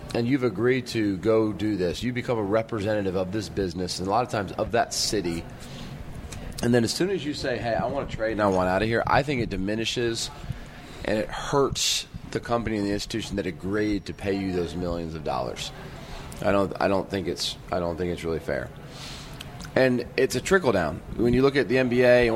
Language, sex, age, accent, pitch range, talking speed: English, male, 30-49, American, 95-130 Hz, 230 wpm